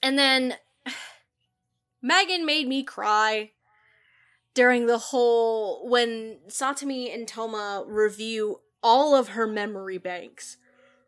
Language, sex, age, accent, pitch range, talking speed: English, female, 20-39, American, 210-280 Hz, 105 wpm